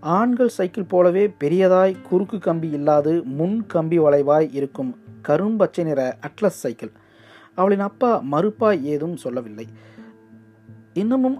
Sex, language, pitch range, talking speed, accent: male, Tamil, 135-185 Hz, 110 wpm, native